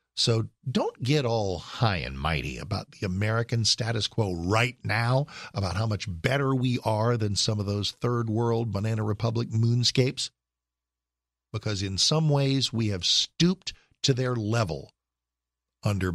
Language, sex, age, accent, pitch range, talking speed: English, male, 50-69, American, 90-125 Hz, 150 wpm